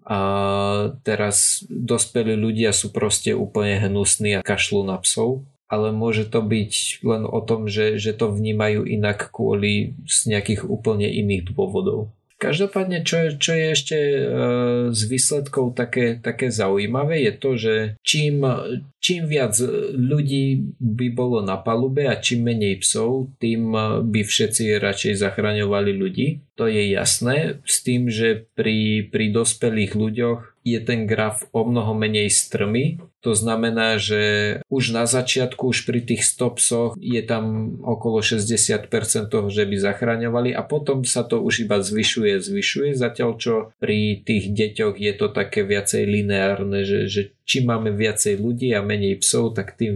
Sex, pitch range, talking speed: male, 105-125 Hz, 150 wpm